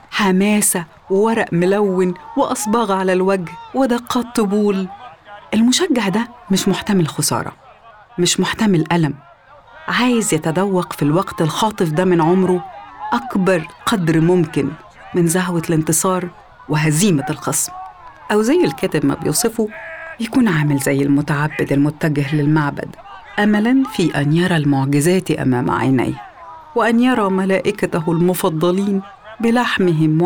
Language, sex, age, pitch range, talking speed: Arabic, female, 40-59, 155-225 Hz, 110 wpm